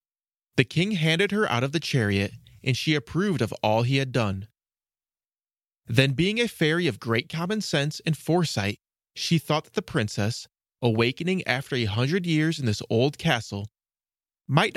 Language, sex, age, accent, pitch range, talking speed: English, male, 20-39, American, 115-160 Hz, 165 wpm